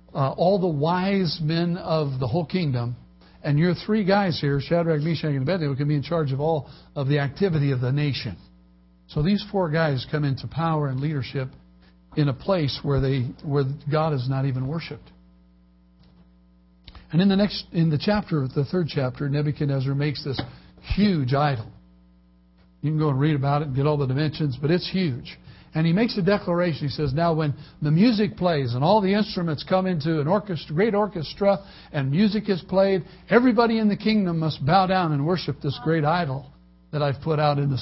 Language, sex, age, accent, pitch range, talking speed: English, male, 60-79, American, 135-175 Hz, 195 wpm